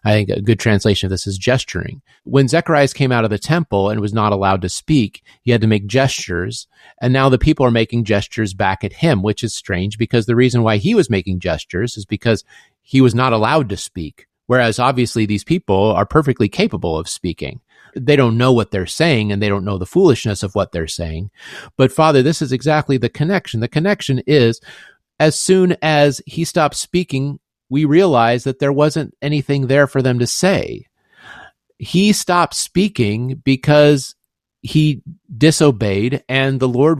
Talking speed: 190 wpm